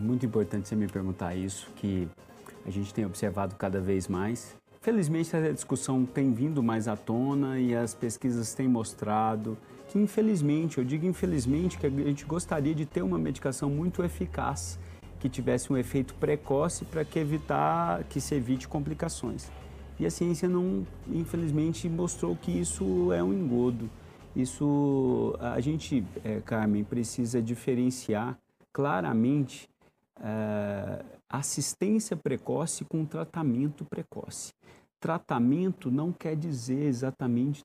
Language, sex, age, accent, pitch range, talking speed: Portuguese, male, 40-59, Brazilian, 110-150 Hz, 130 wpm